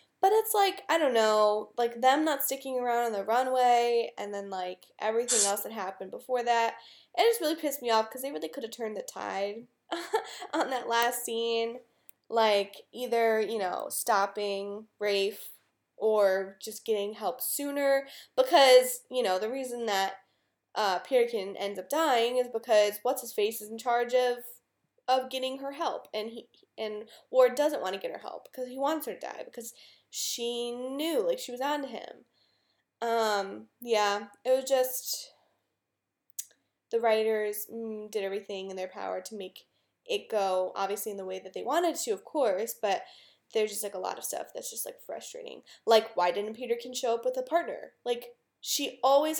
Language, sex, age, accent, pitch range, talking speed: English, female, 10-29, American, 210-265 Hz, 180 wpm